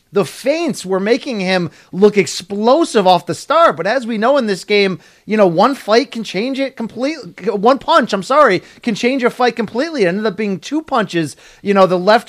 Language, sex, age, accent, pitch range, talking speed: English, male, 30-49, American, 175-220 Hz, 215 wpm